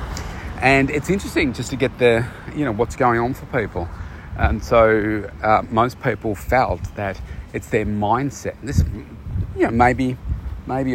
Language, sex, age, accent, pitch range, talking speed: English, male, 40-59, Australian, 90-125 Hz, 160 wpm